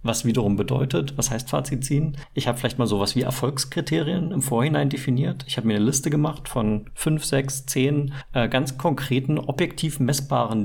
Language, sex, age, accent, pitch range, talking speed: German, male, 40-59, German, 125-140 Hz, 175 wpm